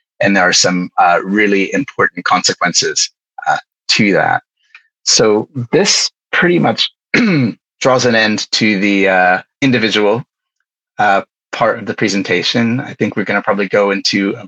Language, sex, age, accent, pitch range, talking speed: English, male, 30-49, American, 100-155 Hz, 150 wpm